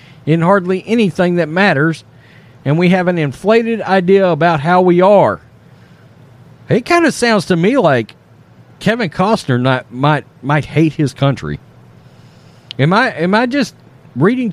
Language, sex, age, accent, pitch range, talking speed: English, male, 40-59, American, 130-195 Hz, 150 wpm